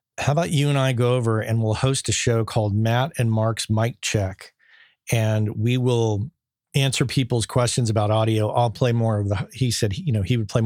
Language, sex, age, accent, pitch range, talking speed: English, male, 40-59, American, 105-125 Hz, 210 wpm